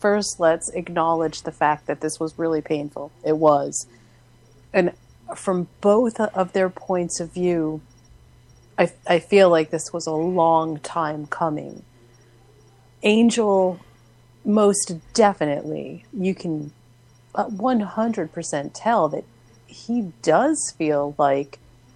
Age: 30-49